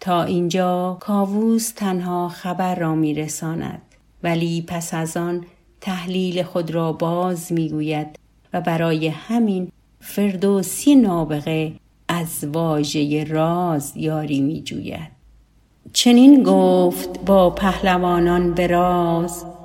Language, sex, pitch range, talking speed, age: Persian, female, 170-210 Hz, 100 wpm, 50-69